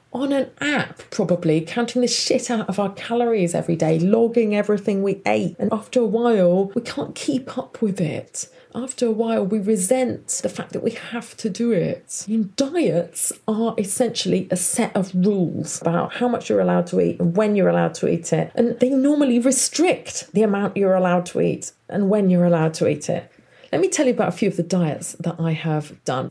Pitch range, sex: 170-225 Hz, female